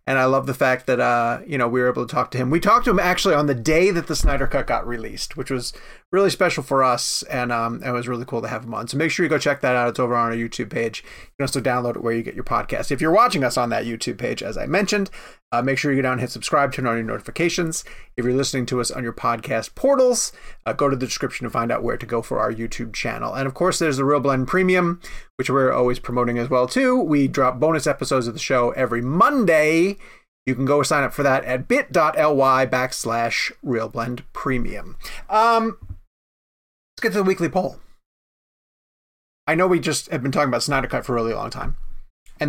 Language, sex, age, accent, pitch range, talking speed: English, male, 30-49, American, 125-165 Hz, 245 wpm